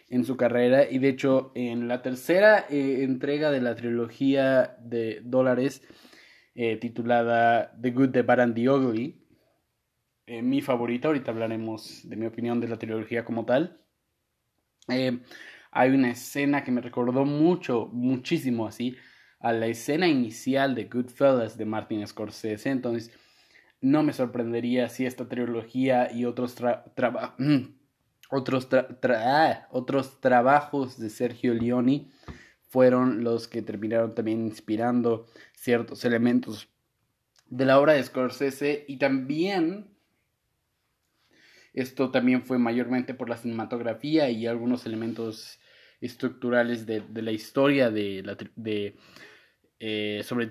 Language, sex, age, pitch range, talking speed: Spanish, male, 20-39, 115-130 Hz, 135 wpm